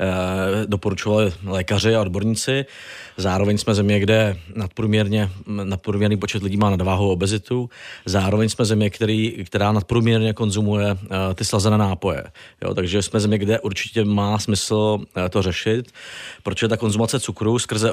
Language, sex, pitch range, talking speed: Czech, male, 100-115 Hz, 125 wpm